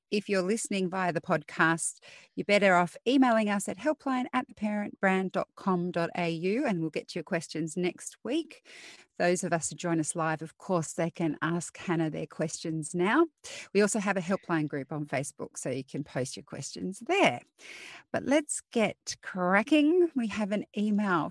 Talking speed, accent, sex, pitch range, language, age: 170 wpm, Australian, female, 165-230 Hz, English, 40-59